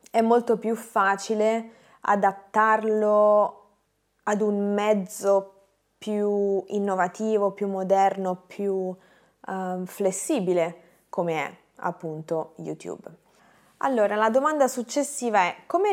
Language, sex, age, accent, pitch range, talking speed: Italian, female, 20-39, native, 180-220 Hz, 90 wpm